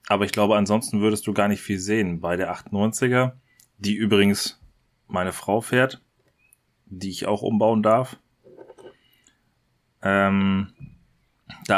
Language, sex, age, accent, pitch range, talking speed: German, male, 30-49, German, 100-120 Hz, 125 wpm